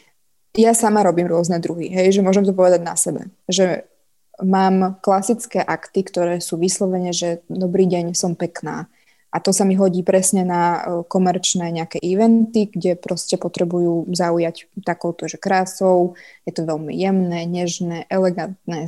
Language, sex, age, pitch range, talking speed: Slovak, female, 20-39, 175-195 Hz, 150 wpm